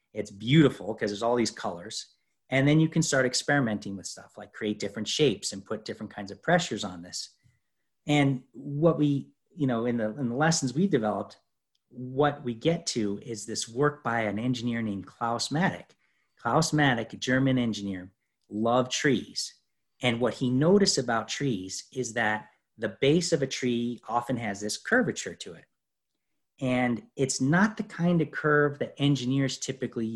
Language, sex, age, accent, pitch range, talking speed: English, male, 40-59, American, 110-140 Hz, 175 wpm